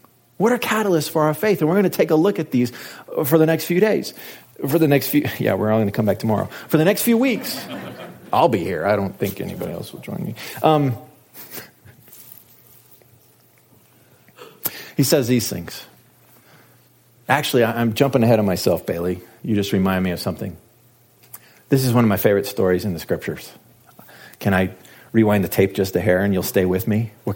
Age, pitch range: 40-59, 100-140 Hz